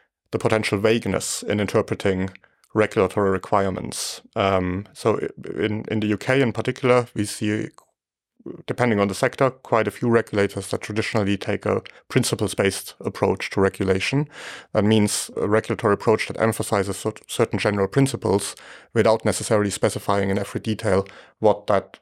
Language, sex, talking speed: English, male, 140 wpm